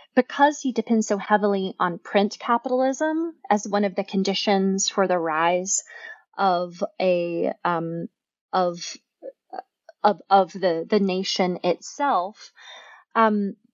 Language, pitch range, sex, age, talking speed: English, 190-240 Hz, female, 20-39, 105 wpm